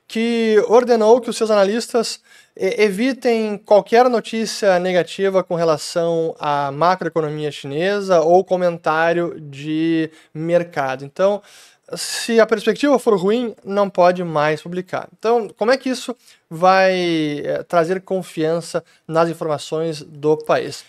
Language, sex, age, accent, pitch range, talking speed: Portuguese, male, 20-39, Brazilian, 165-220 Hz, 120 wpm